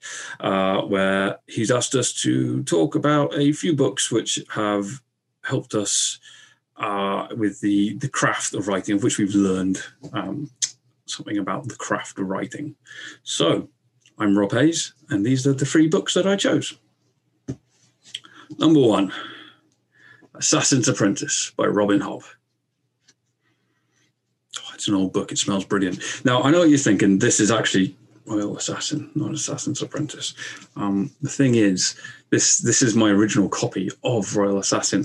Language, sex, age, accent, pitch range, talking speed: English, male, 30-49, British, 100-140 Hz, 150 wpm